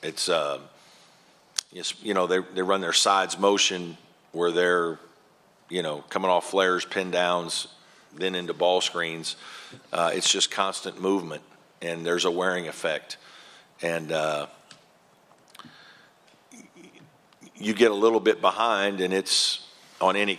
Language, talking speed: English, 135 wpm